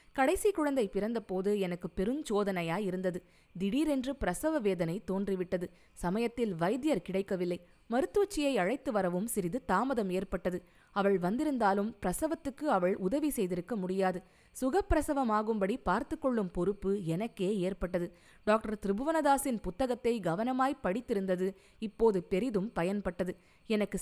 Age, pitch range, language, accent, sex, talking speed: 20-39, 185-265 Hz, Tamil, native, female, 105 wpm